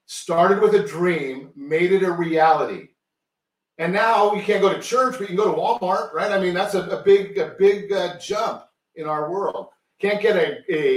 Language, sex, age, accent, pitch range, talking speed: English, male, 50-69, American, 165-200 Hz, 210 wpm